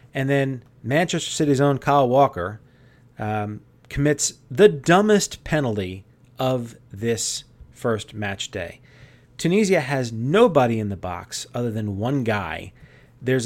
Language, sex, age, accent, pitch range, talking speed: English, male, 30-49, American, 110-140 Hz, 125 wpm